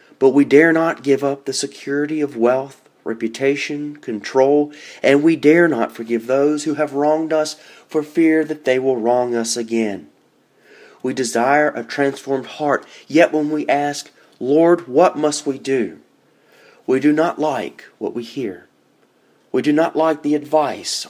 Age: 30-49